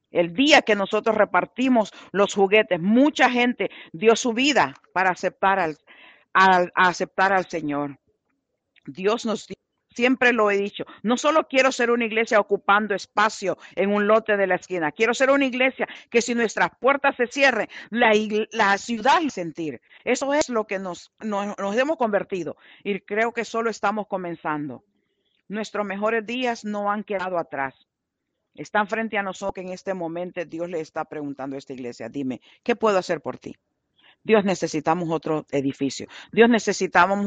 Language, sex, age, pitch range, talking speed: English, female, 50-69, 165-220 Hz, 165 wpm